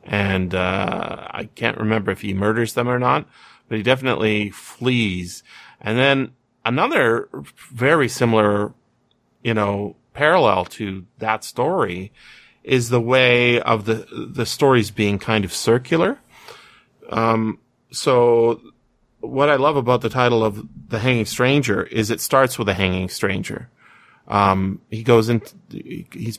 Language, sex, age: English, male, 30-49